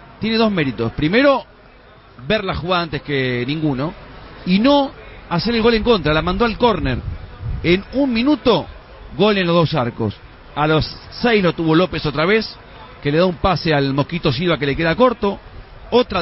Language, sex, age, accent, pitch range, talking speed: Spanish, male, 40-59, Argentinian, 145-200 Hz, 185 wpm